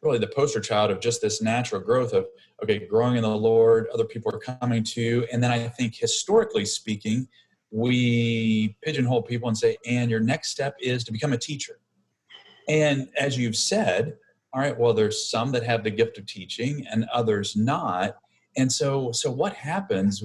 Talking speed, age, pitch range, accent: 190 wpm, 40-59, 110-130 Hz, American